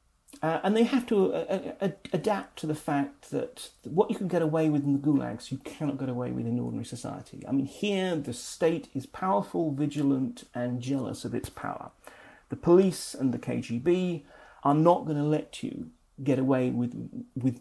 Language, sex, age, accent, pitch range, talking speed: English, male, 40-59, British, 135-190 Hz, 195 wpm